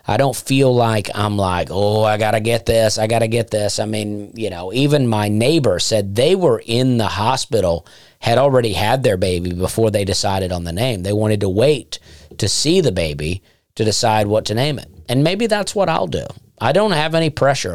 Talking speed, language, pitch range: 225 wpm, English, 100-130 Hz